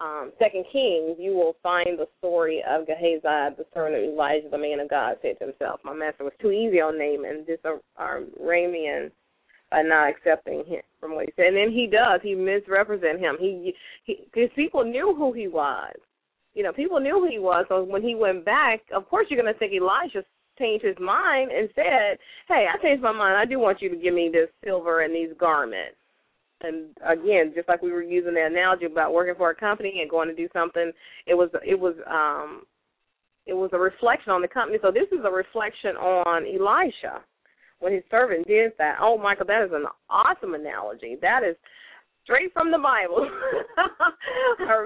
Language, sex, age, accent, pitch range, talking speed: English, female, 20-39, American, 165-245 Hz, 205 wpm